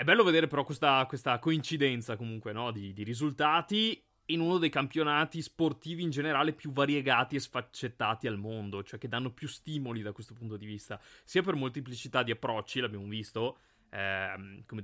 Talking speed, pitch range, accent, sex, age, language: 175 wpm, 110-150 Hz, native, male, 20-39, Italian